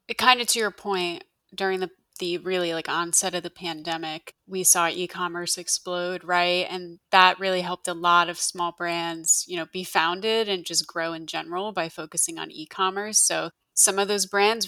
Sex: female